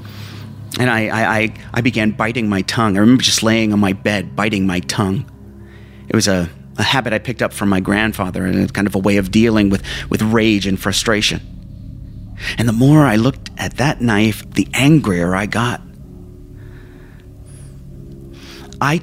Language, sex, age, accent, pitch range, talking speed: English, male, 30-49, American, 75-115 Hz, 170 wpm